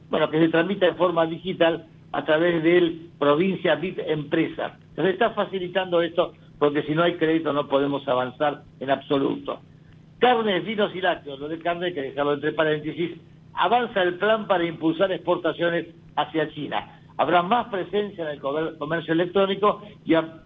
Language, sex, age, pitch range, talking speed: Spanish, male, 50-69, 150-185 Hz, 160 wpm